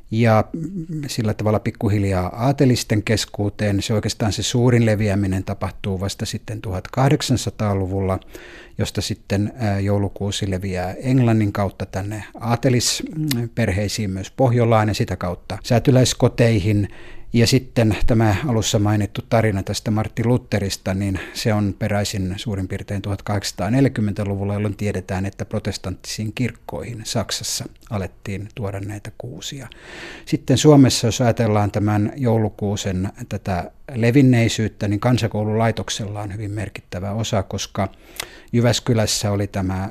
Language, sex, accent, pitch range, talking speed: Finnish, male, native, 100-115 Hz, 110 wpm